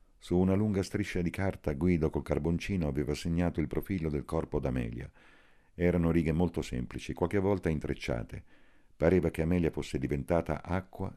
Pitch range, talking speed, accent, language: 70-90 Hz, 155 wpm, native, Italian